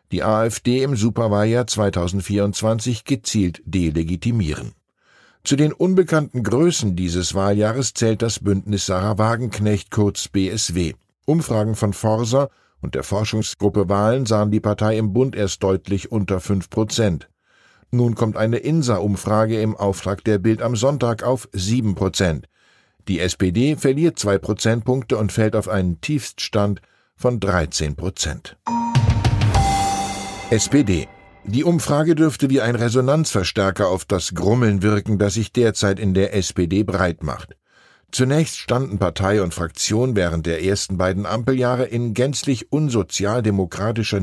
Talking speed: 125 wpm